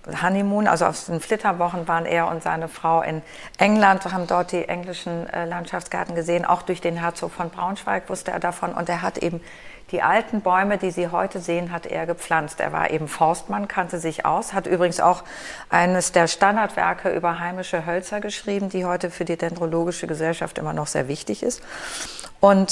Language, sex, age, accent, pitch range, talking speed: German, female, 40-59, German, 165-185 Hz, 185 wpm